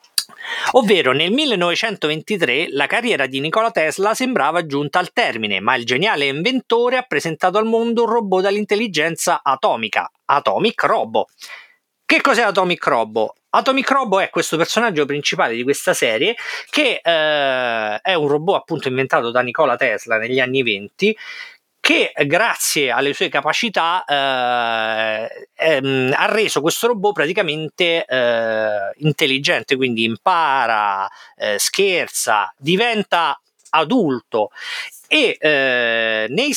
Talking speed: 125 wpm